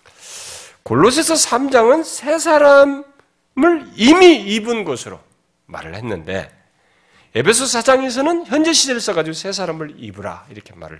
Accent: native